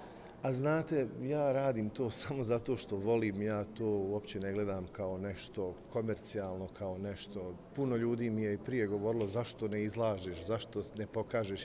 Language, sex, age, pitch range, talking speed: Croatian, male, 40-59, 105-130 Hz, 165 wpm